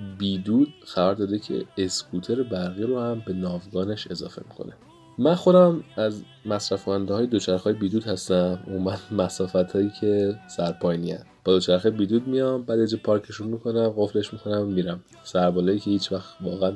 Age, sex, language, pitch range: 30-49, male, Persian, 95-115 Hz